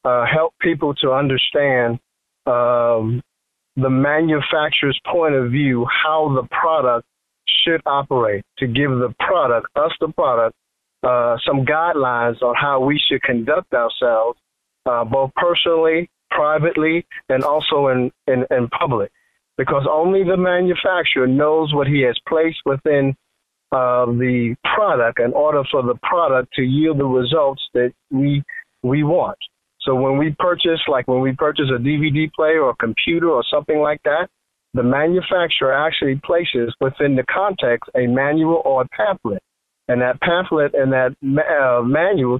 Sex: male